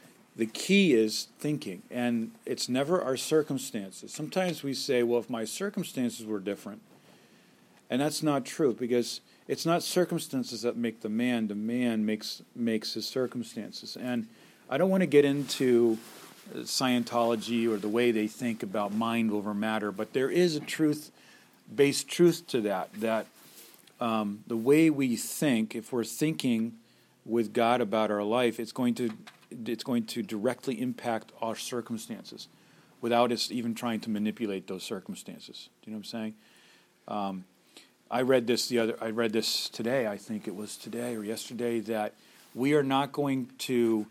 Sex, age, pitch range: male, 40-59, 110-135 Hz